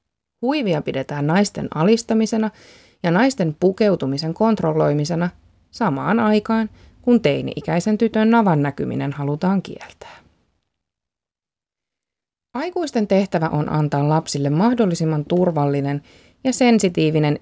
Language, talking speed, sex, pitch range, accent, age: Finnish, 90 wpm, female, 150-215 Hz, native, 20-39